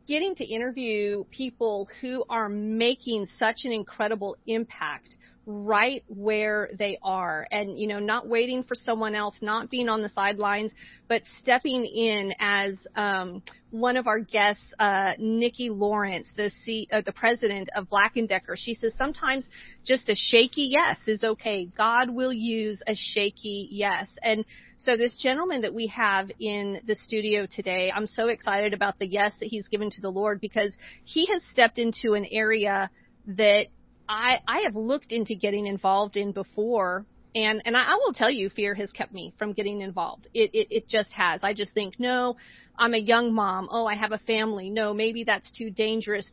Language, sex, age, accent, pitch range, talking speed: English, female, 40-59, American, 205-235 Hz, 180 wpm